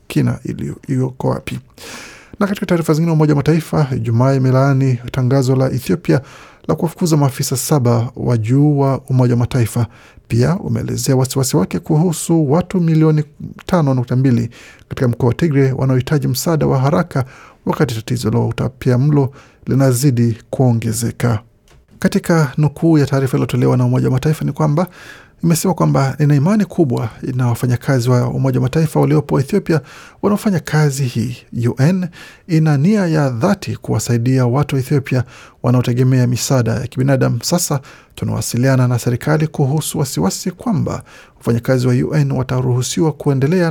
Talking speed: 140 wpm